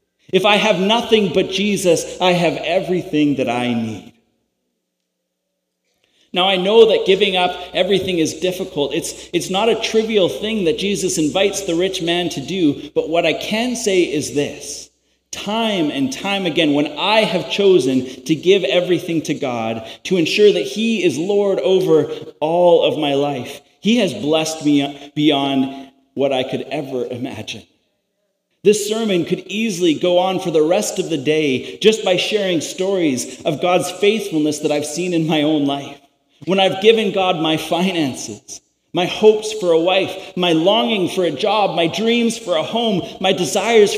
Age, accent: 30-49, American